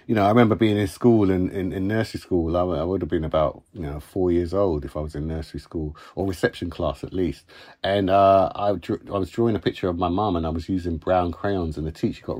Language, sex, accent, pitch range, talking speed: English, male, British, 85-105 Hz, 275 wpm